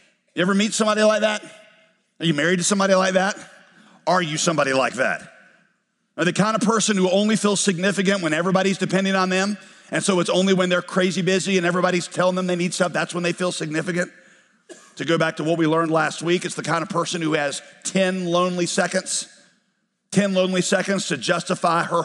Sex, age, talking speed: male, 50-69, 210 wpm